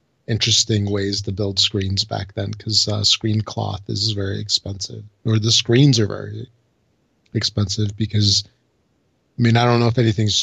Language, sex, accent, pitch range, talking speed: English, male, American, 100-115 Hz, 160 wpm